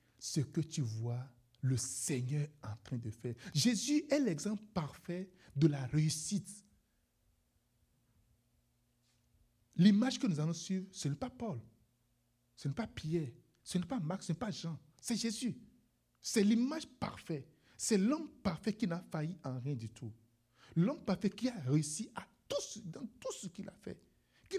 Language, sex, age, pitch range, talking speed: French, male, 60-79, 120-200 Hz, 160 wpm